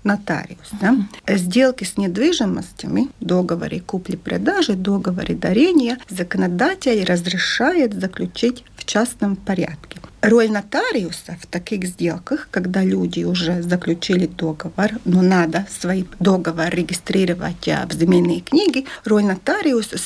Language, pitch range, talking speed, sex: Russian, 185-255 Hz, 100 wpm, female